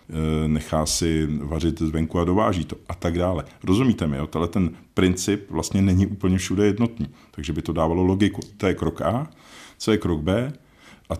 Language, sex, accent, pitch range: Czech, male, native, 80-100 Hz